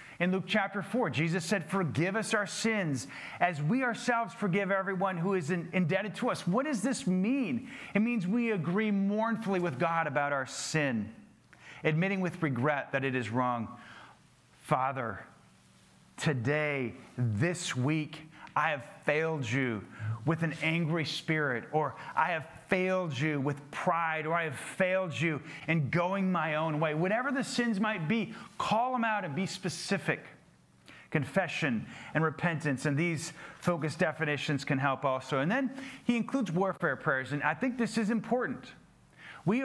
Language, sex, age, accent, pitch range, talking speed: English, male, 40-59, American, 150-210 Hz, 155 wpm